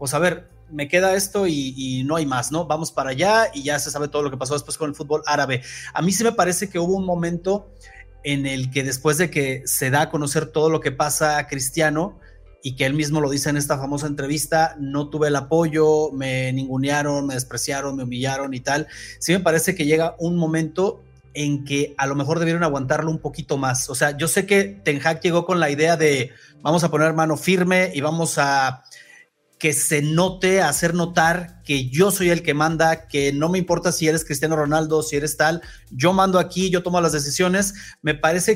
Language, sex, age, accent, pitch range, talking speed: Spanish, male, 30-49, Mexican, 140-170 Hz, 225 wpm